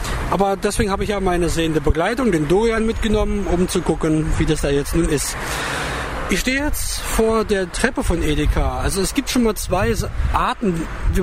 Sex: male